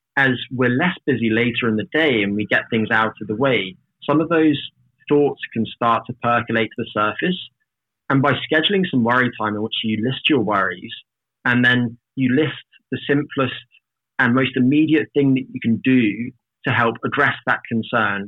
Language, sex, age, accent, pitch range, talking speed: Danish, male, 20-39, British, 110-135 Hz, 190 wpm